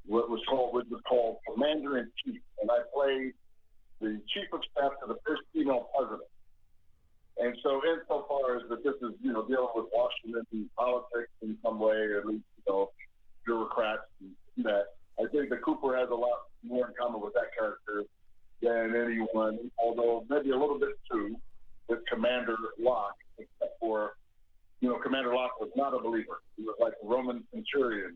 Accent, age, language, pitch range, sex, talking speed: American, 50-69, English, 105-130 Hz, male, 180 wpm